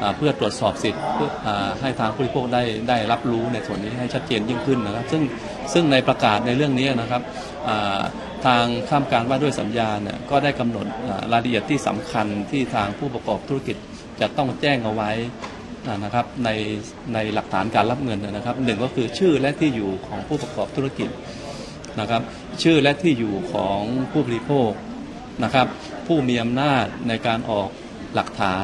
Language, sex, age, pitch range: Thai, male, 20-39, 105-130 Hz